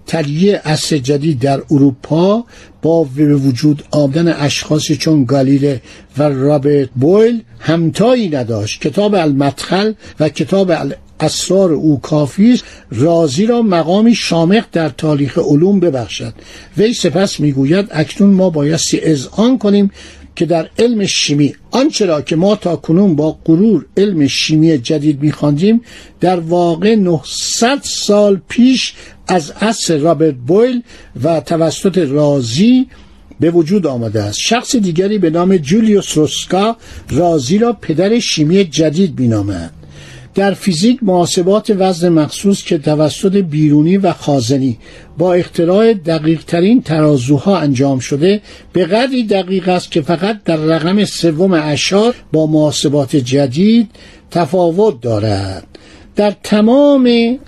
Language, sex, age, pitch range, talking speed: Persian, male, 60-79, 150-200 Hz, 120 wpm